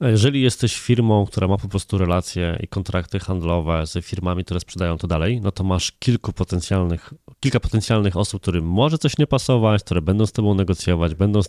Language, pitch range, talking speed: Polish, 90-115 Hz, 195 wpm